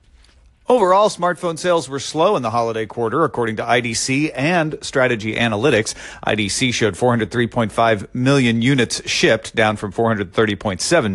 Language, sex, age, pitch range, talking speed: English, male, 40-59, 110-140 Hz, 130 wpm